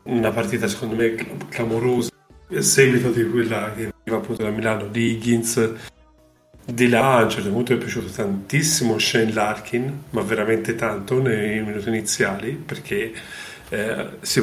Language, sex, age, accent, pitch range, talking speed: Italian, male, 30-49, native, 110-125 Hz, 135 wpm